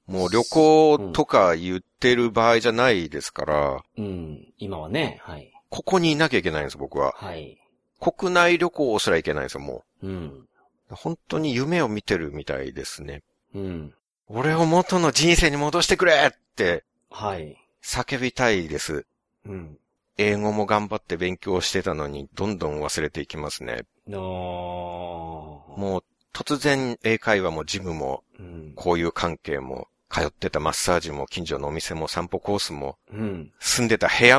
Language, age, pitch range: Japanese, 60-79, 85-145 Hz